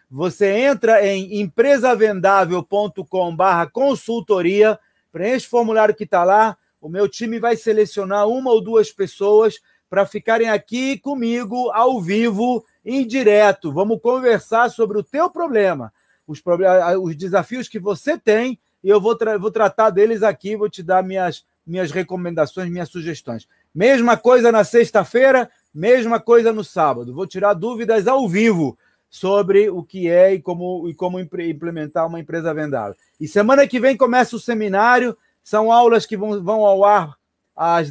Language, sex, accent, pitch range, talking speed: Portuguese, male, Brazilian, 185-230 Hz, 150 wpm